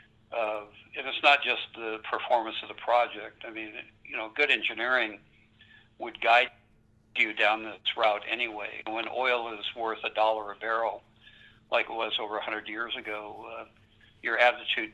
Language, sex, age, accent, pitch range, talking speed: English, male, 60-79, American, 105-115 Hz, 165 wpm